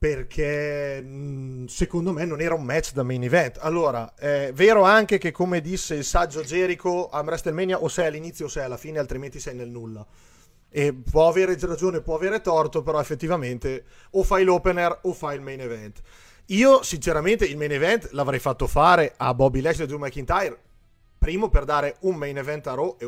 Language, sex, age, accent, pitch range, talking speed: Italian, male, 30-49, native, 125-165 Hz, 195 wpm